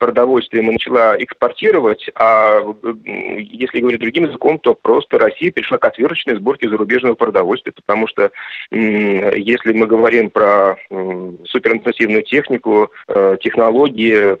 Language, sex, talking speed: Russian, male, 115 wpm